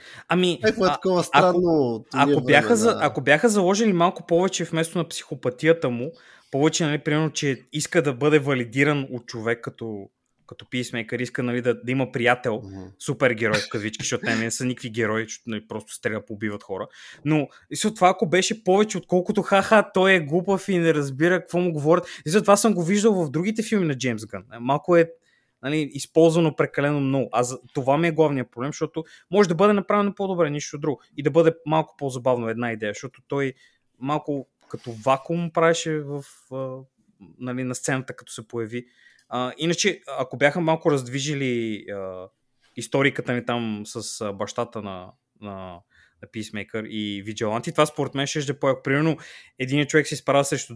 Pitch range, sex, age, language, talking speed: 120-165 Hz, male, 20-39, Bulgarian, 180 wpm